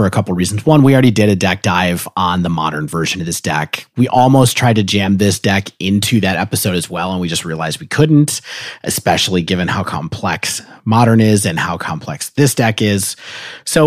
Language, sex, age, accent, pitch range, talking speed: English, male, 30-49, American, 95-125 Hz, 210 wpm